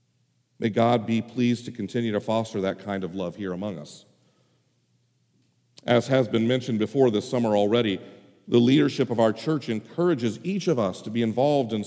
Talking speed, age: 180 wpm, 40-59